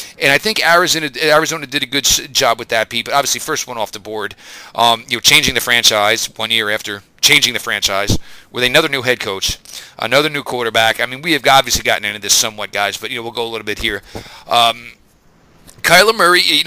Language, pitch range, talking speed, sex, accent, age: English, 115-145 Hz, 225 wpm, male, American, 40-59